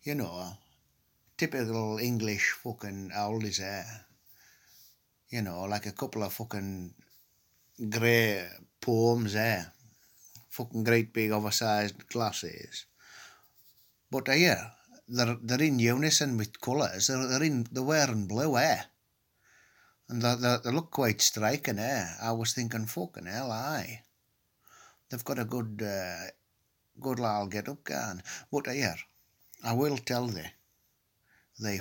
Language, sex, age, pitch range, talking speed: English, male, 60-79, 105-125 Hz, 125 wpm